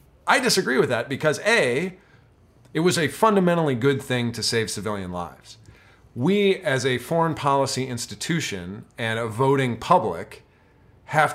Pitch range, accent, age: 105-140 Hz, American, 40-59